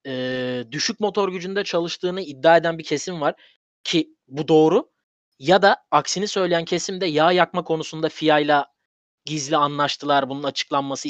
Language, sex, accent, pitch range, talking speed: Turkish, male, native, 135-175 Hz, 140 wpm